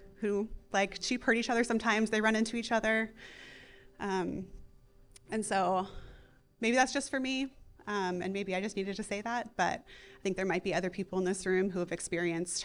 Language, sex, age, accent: English, female, 20-39, American